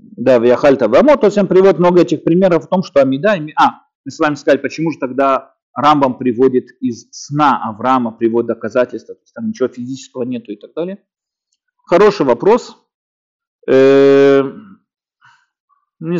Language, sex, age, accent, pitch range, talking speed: Russian, male, 40-59, native, 125-200 Hz, 150 wpm